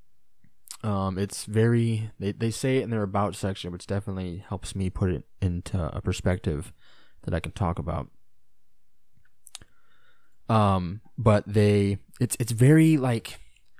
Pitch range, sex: 95-115 Hz, male